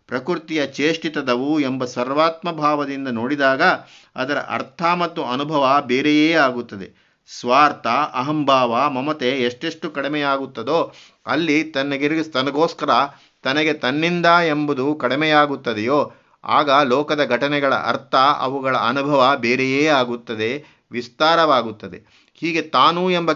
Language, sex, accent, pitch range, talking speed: Kannada, male, native, 130-155 Hz, 90 wpm